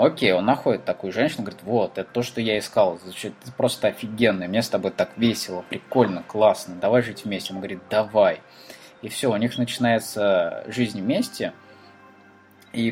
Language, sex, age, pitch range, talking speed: Russian, male, 20-39, 105-125 Hz, 165 wpm